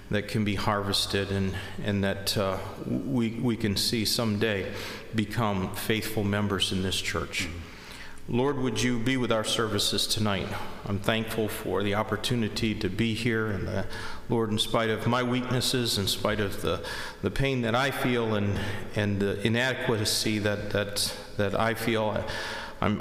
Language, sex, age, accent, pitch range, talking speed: English, male, 40-59, American, 100-115 Hz, 160 wpm